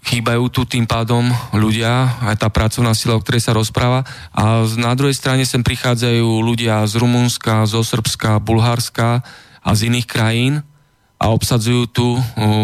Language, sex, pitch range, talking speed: Slovak, male, 115-125 Hz, 155 wpm